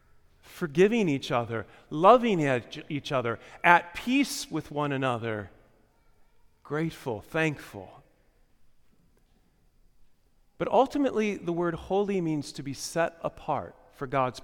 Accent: American